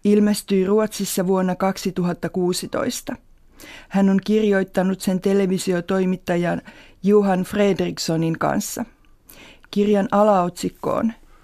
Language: Finnish